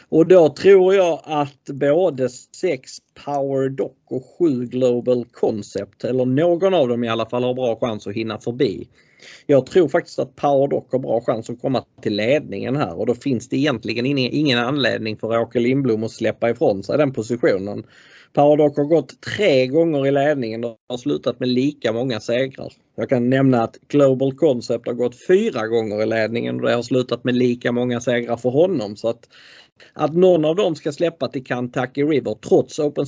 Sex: male